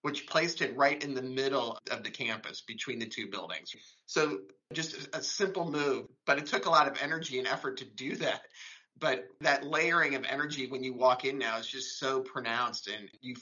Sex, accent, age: male, American, 30-49